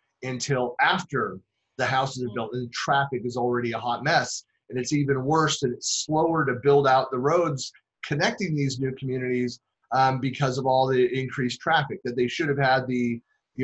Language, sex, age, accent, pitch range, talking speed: English, male, 30-49, American, 125-140 Hz, 195 wpm